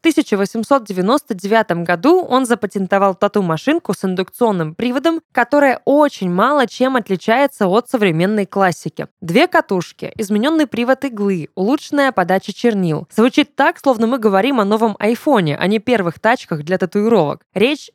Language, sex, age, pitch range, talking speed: Russian, female, 20-39, 190-255 Hz, 135 wpm